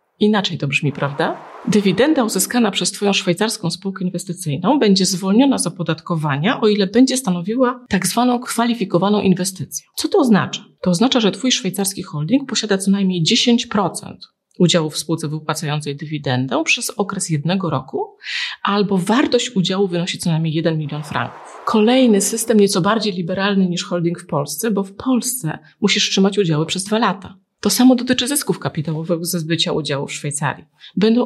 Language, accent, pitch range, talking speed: Polish, native, 175-235 Hz, 160 wpm